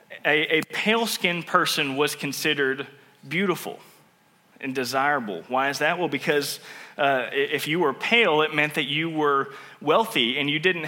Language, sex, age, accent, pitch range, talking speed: English, male, 20-39, American, 135-170 Hz, 155 wpm